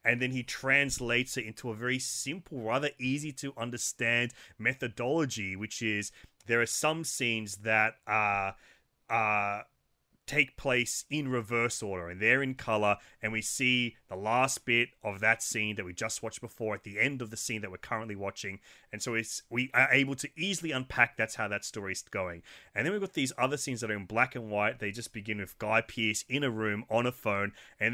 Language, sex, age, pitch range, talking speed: English, male, 30-49, 110-135 Hz, 210 wpm